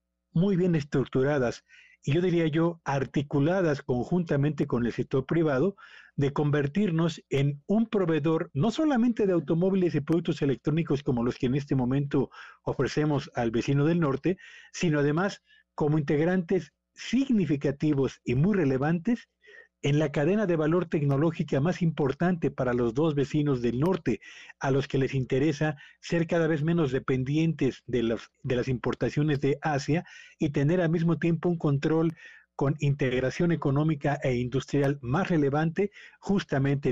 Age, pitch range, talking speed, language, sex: 50-69, 135-170 Hz, 145 wpm, Spanish, male